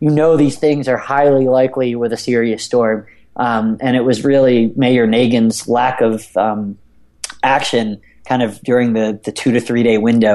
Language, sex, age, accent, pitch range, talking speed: English, male, 30-49, American, 115-150 Hz, 180 wpm